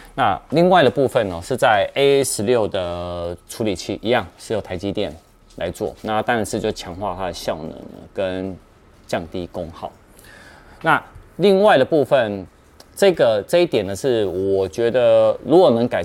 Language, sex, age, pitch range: Chinese, male, 30-49, 90-115 Hz